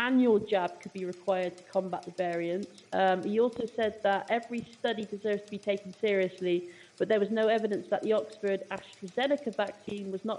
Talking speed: 190 wpm